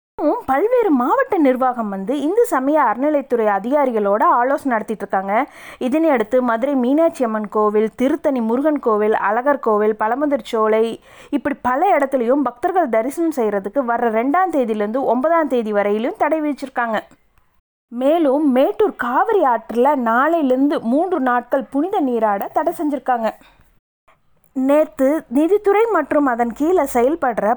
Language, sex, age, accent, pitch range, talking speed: Tamil, female, 30-49, native, 225-295 Hz, 115 wpm